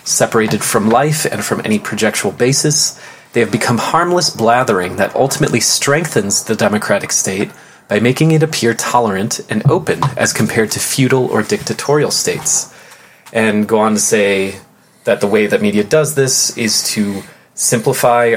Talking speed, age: 155 wpm, 30-49